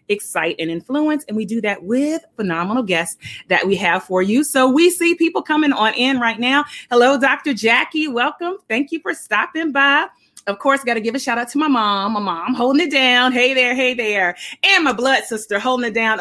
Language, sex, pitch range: English, female, 200-270 Hz